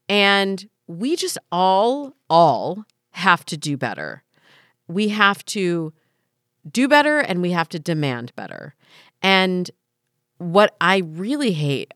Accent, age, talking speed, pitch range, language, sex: American, 40-59, 125 wpm, 140-210 Hz, English, female